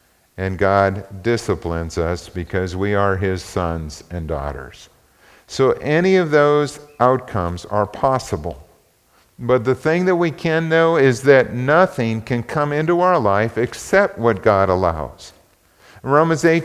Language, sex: English, male